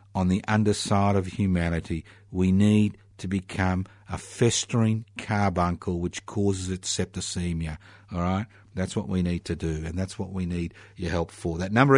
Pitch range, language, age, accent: 95-125 Hz, English, 50-69, Australian